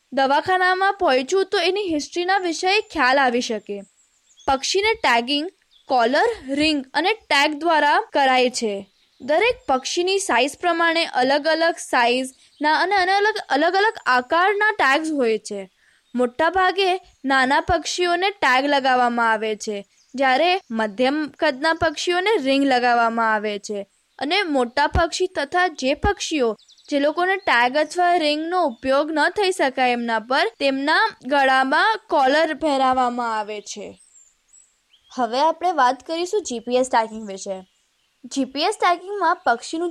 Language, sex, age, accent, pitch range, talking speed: Gujarati, female, 10-29, native, 245-355 Hz, 70 wpm